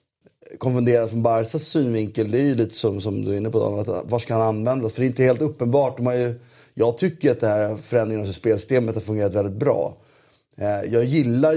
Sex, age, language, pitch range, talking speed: male, 30-49, Swedish, 105-130 Hz, 220 wpm